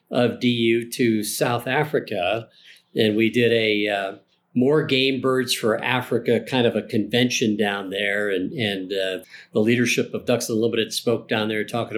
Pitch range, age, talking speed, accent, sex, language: 105-125 Hz, 50-69, 165 wpm, American, male, English